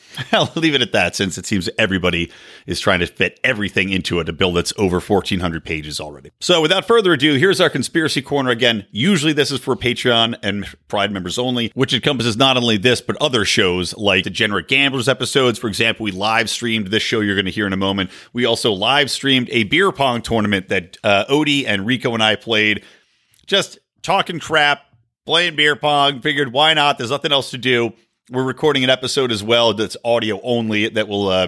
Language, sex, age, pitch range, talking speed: English, male, 40-59, 100-140 Hz, 210 wpm